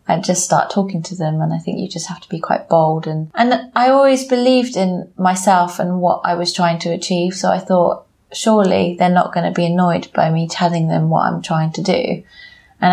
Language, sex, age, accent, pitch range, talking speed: English, female, 30-49, British, 170-195 Hz, 230 wpm